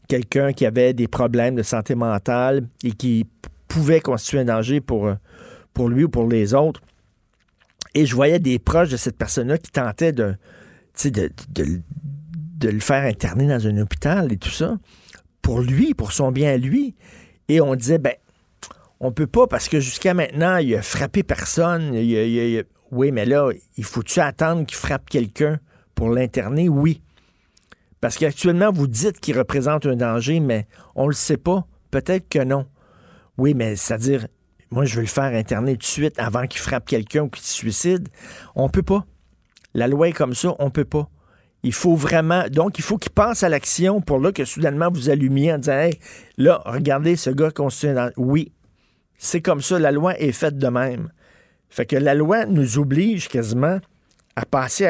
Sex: male